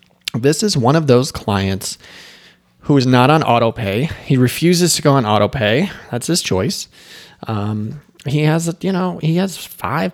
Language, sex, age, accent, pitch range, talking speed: English, male, 30-49, American, 105-140 Hz, 165 wpm